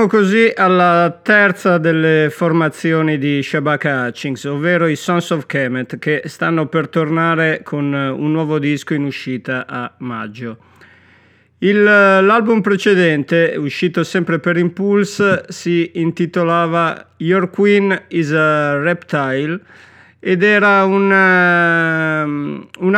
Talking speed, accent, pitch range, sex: 110 wpm, native, 145-180 Hz, male